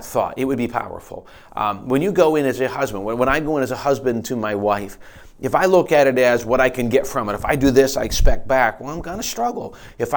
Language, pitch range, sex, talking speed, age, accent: English, 115-145 Hz, male, 290 wpm, 40-59, American